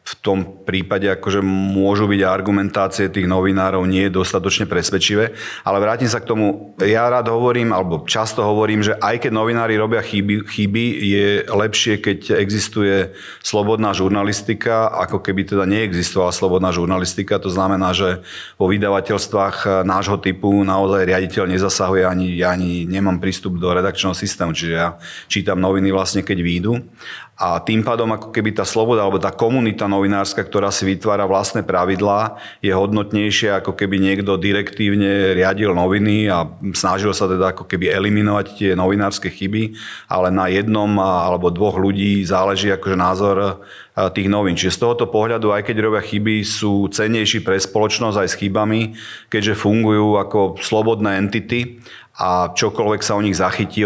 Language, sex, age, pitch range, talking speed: Slovak, male, 40-59, 95-105 Hz, 155 wpm